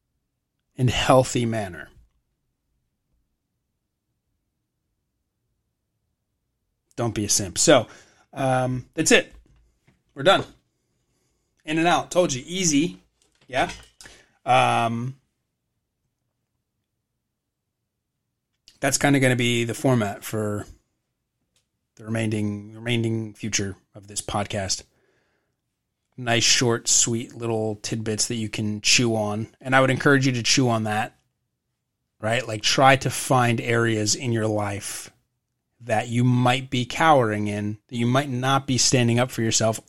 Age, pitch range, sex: 30-49, 105-130 Hz, male